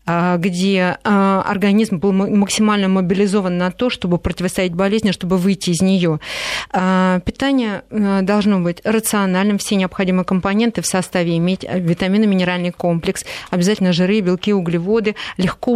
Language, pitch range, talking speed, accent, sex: Russian, 185-215 Hz, 120 wpm, native, female